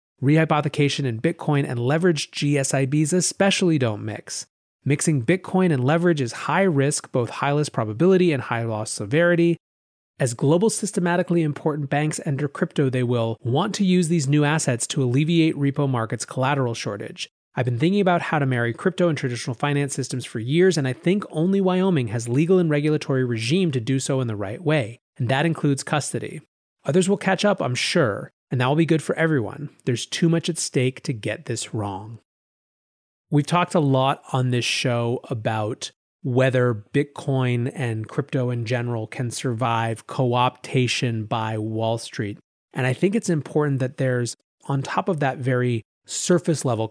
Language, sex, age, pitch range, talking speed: English, male, 30-49, 120-155 Hz, 170 wpm